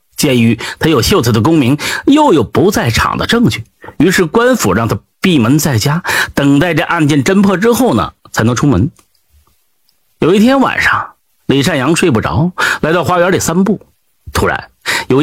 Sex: male